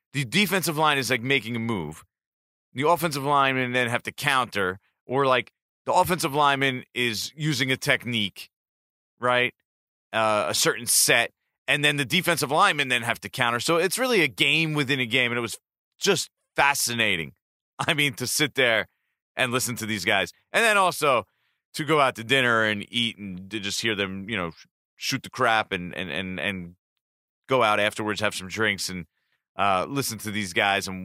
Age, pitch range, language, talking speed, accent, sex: 30-49, 100-130 Hz, English, 190 wpm, American, male